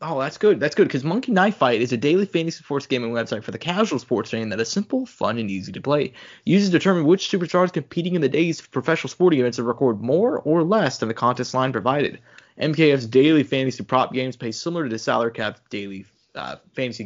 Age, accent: 20-39, American